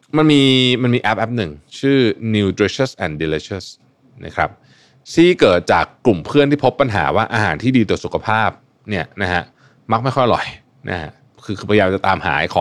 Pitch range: 100-130 Hz